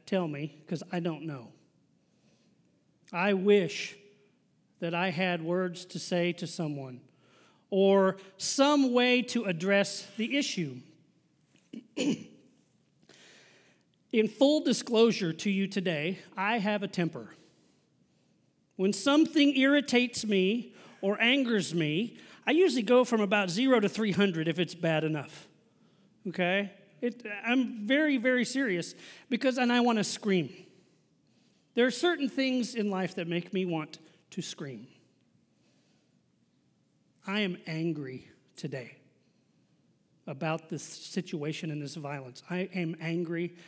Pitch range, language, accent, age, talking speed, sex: 165-225 Hz, English, American, 40-59, 120 wpm, male